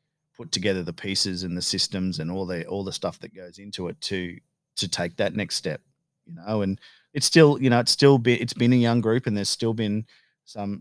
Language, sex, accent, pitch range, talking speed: English, male, Australian, 90-110 Hz, 245 wpm